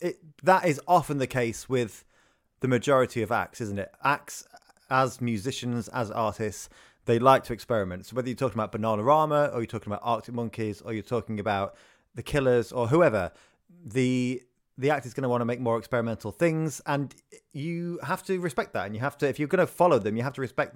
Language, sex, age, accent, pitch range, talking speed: English, male, 30-49, British, 110-145 Hz, 215 wpm